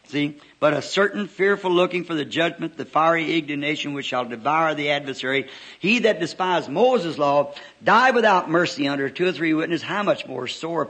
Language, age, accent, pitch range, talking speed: English, 60-79, American, 155-190 Hz, 185 wpm